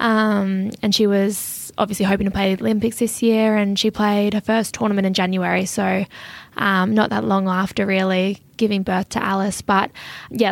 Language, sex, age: English, female, 20-39